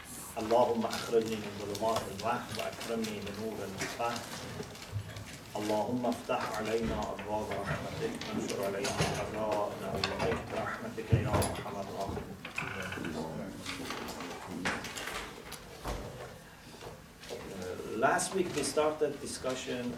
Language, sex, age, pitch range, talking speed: English, male, 40-59, 110-150 Hz, 80 wpm